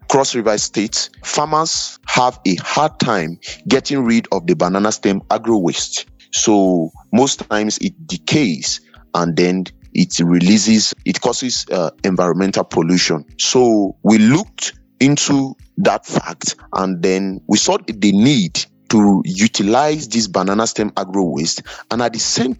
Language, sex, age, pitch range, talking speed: English, male, 30-49, 95-120 Hz, 140 wpm